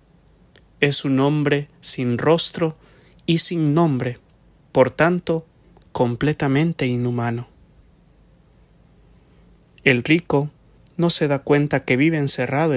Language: English